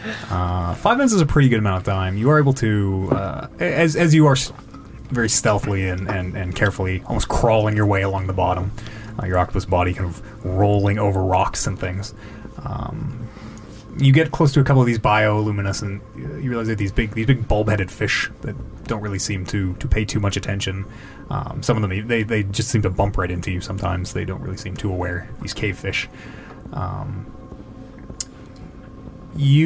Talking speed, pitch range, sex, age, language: 195 wpm, 100-130 Hz, male, 20-39, English